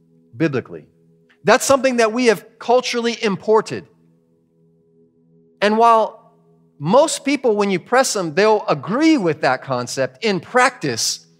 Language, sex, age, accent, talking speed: English, male, 40-59, American, 120 wpm